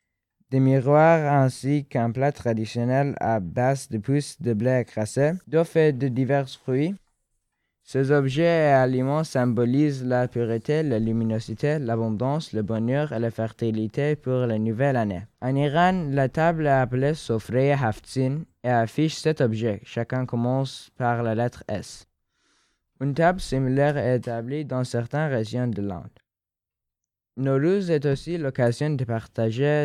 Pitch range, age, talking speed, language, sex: 115-145 Hz, 20-39, 145 wpm, French, male